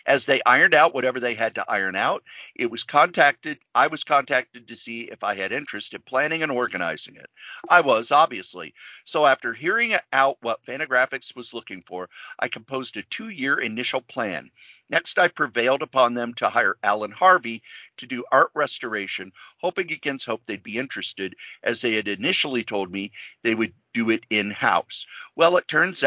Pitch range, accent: 110-145 Hz, American